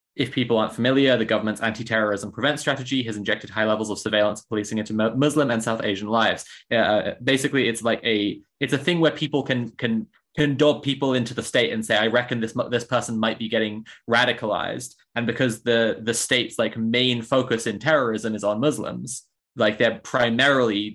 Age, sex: 20-39, male